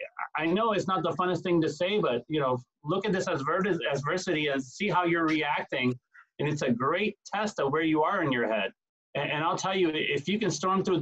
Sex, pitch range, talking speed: male, 140-175 Hz, 235 wpm